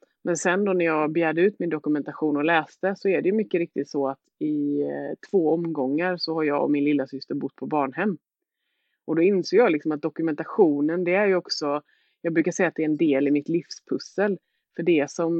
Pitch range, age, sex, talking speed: 145-175 Hz, 30-49, female, 220 wpm